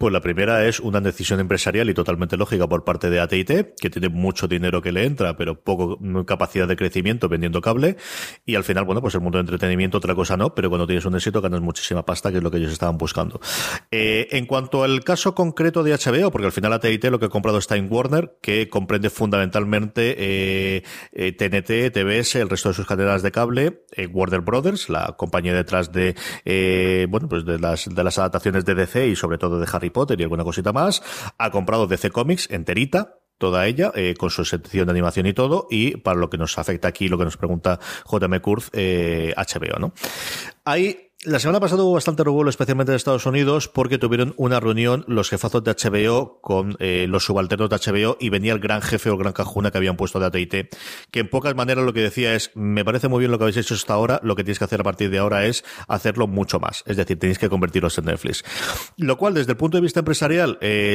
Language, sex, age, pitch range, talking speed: Spanish, male, 30-49, 95-120 Hz, 225 wpm